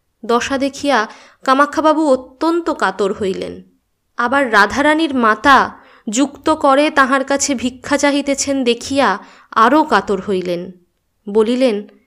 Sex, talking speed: female, 100 wpm